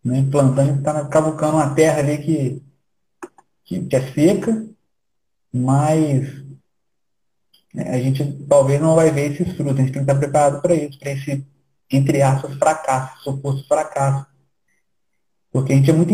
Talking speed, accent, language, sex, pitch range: 165 wpm, Brazilian, Portuguese, male, 135-160 Hz